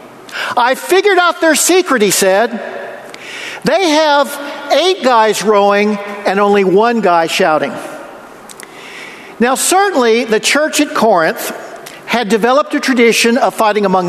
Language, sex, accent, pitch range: English, male, American, 200-295 Hz